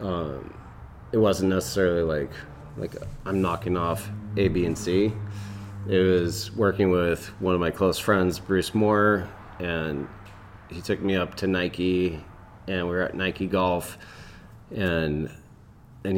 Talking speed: 145 wpm